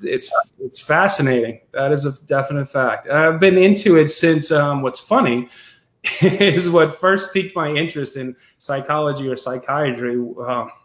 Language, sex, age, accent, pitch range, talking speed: English, male, 20-39, American, 130-160 Hz, 150 wpm